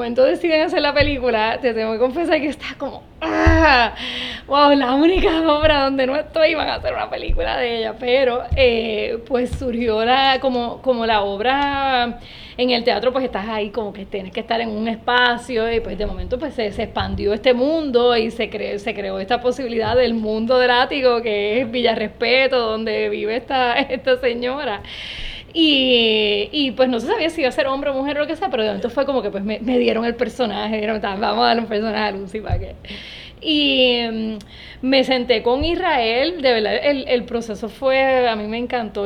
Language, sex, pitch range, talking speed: English, female, 220-265 Hz, 205 wpm